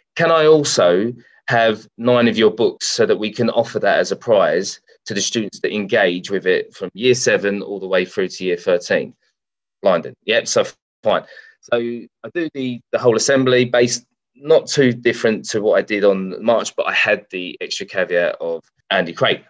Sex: male